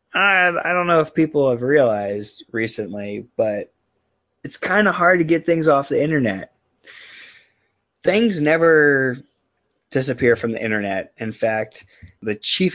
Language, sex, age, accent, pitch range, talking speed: English, male, 20-39, American, 105-140 Hz, 135 wpm